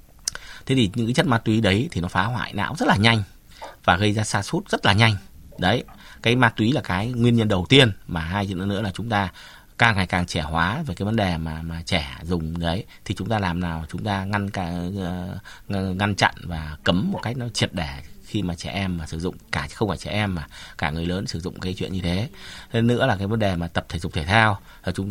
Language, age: Vietnamese, 20-39